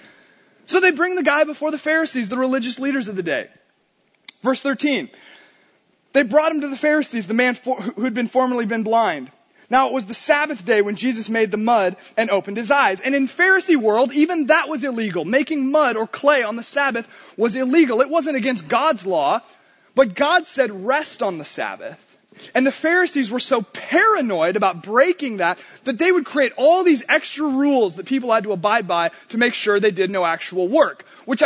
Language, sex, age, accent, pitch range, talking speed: English, male, 20-39, American, 225-300 Hz, 200 wpm